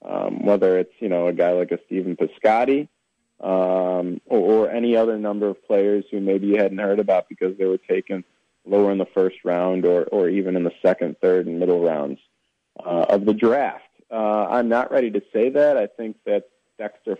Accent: American